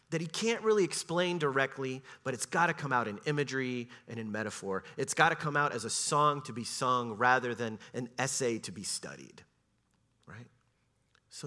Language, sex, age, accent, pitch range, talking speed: English, male, 30-49, American, 120-165 Hz, 195 wpm